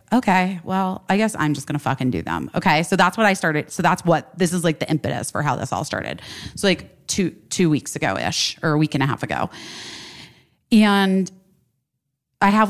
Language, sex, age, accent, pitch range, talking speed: English, female, 30-49, American, 140-185 Hz, 220 wpm